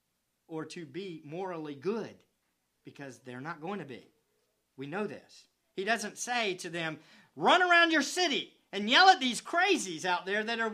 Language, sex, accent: English, male, American